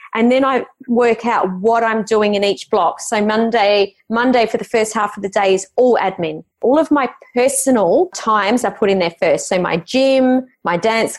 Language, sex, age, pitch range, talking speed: English, female, 30-49, 190-235 Hz, 210 wpm